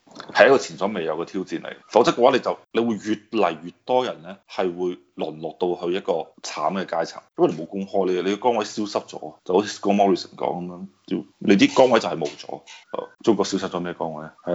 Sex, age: male, 20-39